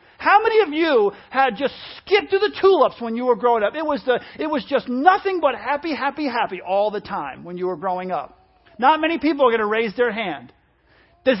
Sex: male